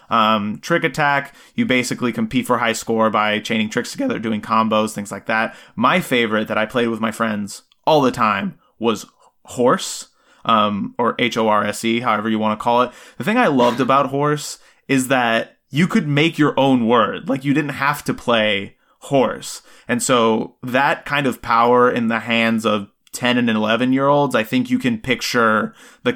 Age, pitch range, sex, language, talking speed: 20-39, 115-135 Hz, male, English, 190 wpm